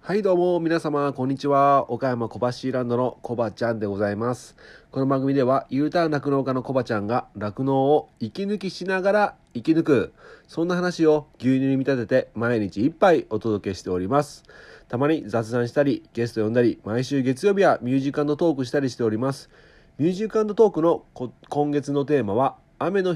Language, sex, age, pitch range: Japanese, male, 40-59, 115-150 Hz